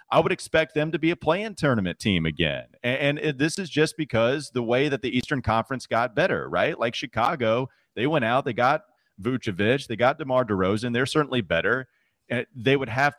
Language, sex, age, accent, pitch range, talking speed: English, male, 30-49, American, 115-140 Hz, 195 wpm